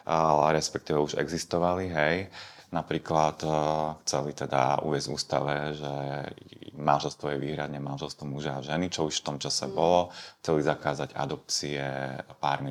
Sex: male